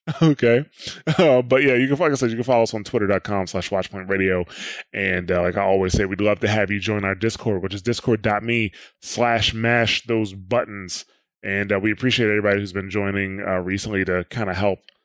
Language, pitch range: English, 95-120 Hz